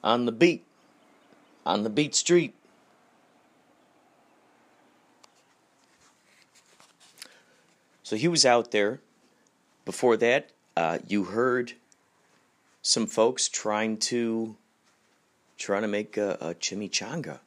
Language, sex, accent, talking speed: English, male, American, 95 wpm